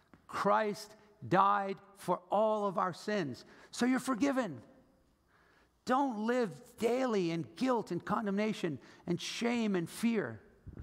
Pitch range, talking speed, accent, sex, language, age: 180-220 Hz, 115 wpm, American, male, English, 50-69